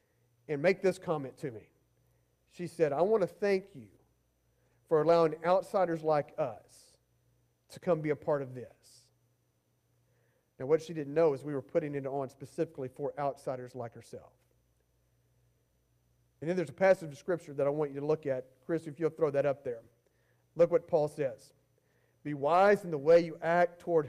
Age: 40-59